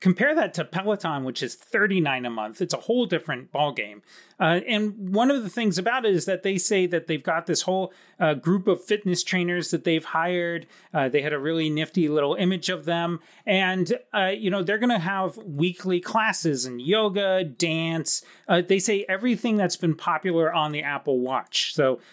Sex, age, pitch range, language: male, 30-49, 160-210 Hz, English